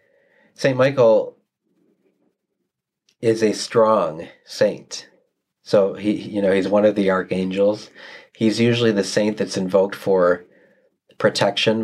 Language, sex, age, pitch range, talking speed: English, male, 30-49, 95-110 Hz, 115 wpm